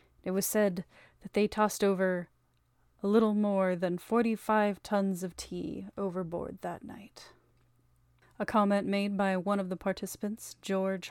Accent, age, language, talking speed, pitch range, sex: American, 30-49, English, 145 wpm, 180-210 Hz, female